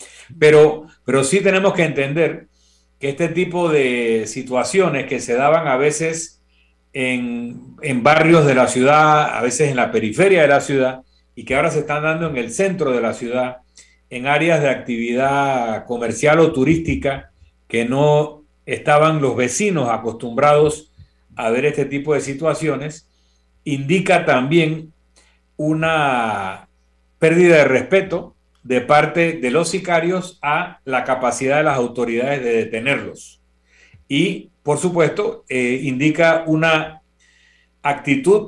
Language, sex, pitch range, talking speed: Spanish, male, 125-160 Hz, 135 wpm